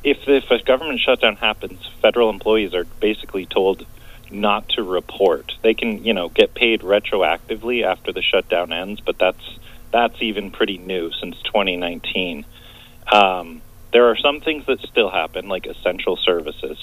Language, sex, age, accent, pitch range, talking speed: English, male, 30-49, American, 90-115 Hz, 155 wpm